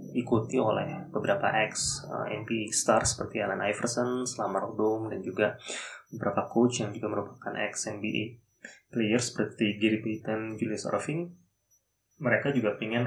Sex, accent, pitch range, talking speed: male, native, 100-120 Hz, 130 wpm